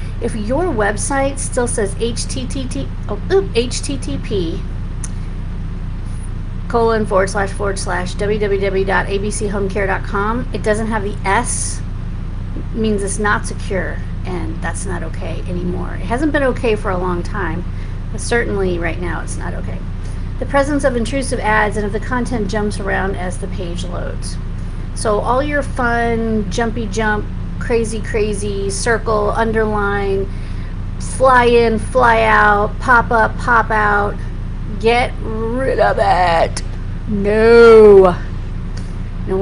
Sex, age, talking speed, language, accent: female, 40-59, 125 wpm, English, American